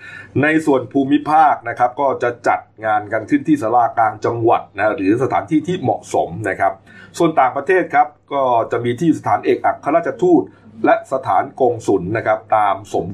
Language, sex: Thai, male